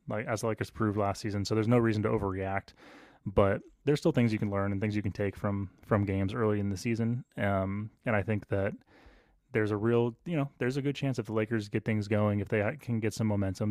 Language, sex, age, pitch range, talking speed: English, male, 20-39, 100-115 Hz, 255 wpm